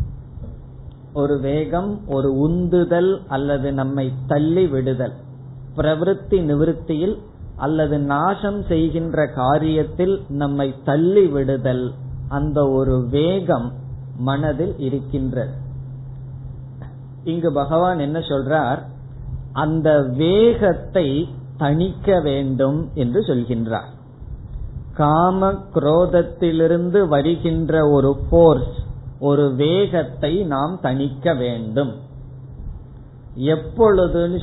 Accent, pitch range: native, 130-165 Hz